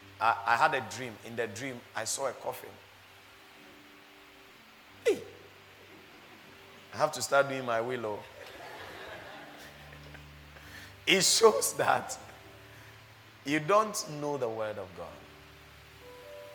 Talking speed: 110 wpm